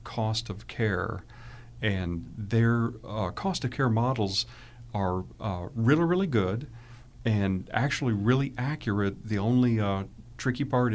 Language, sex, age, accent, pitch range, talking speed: English, male, 40-59, American, 95-120 Hz, 130 wpm